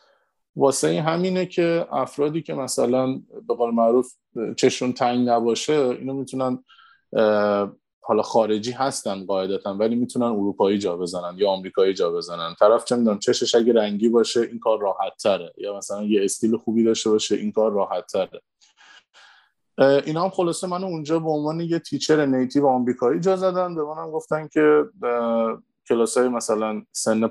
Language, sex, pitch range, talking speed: Persian, male, 115-160 Hz, 155 wpm